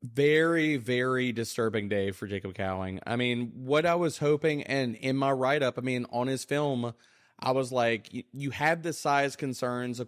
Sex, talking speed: male, 190 wpm